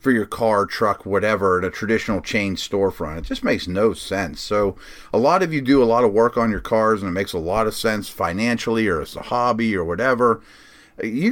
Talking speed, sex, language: 230 wpm, male, English